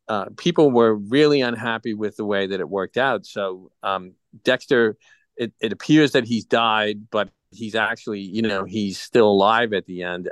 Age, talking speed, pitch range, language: 40-59, 185 wpm, 95-115 Hz, English